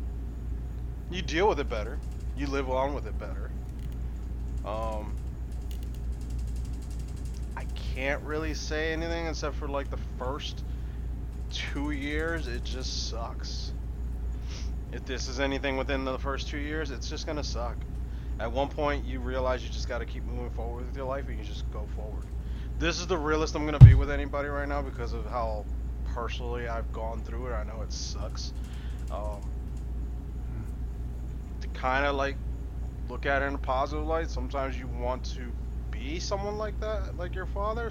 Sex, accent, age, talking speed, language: male, American, 20-39, 170 wpm, English